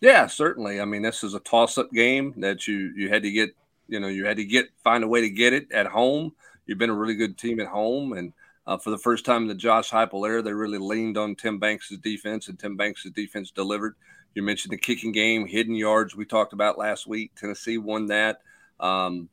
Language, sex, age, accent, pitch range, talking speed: English, male, 40-59, American, 105-115 Hz, 235 wpm